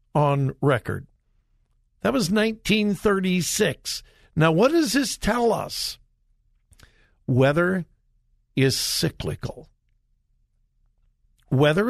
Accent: American